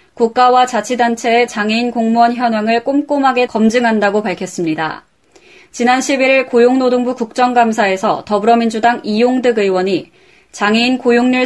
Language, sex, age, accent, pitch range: Korean, female, 20-39, native, 215-255 Hz